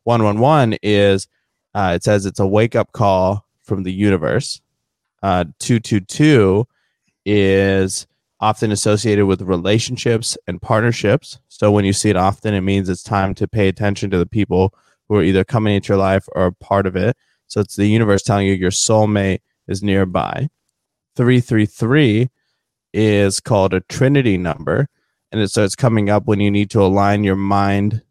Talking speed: 165 wpm